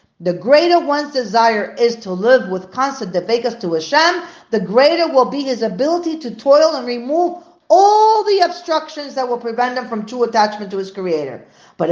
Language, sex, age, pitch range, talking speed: English, female, 40-59, 195-280 Hz, 180 wpm